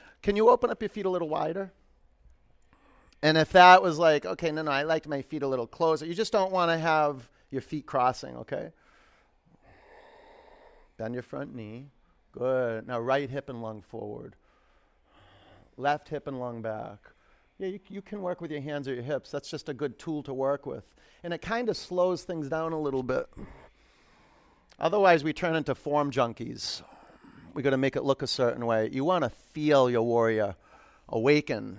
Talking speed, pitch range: 190 wpm, 135-170 Hz